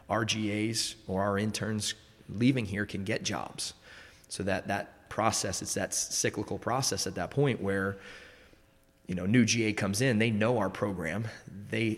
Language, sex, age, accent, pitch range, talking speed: English, male, 20-39, American, 95-110 Hz, 155 wpm